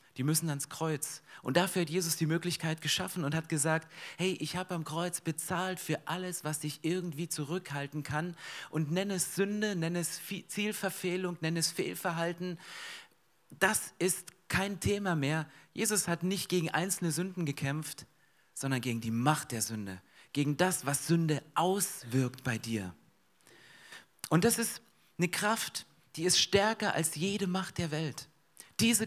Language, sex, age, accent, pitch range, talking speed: German, male, 40-59, German, 155-185 Hz, 155 wpm